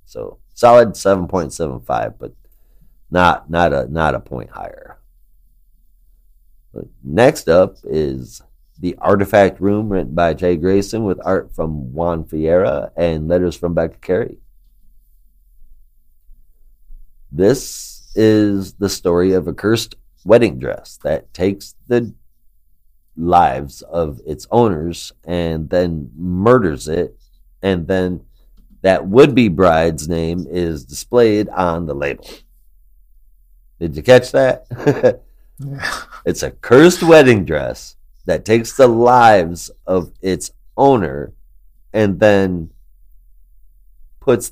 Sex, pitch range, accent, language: male, 70-100 Hz, American, English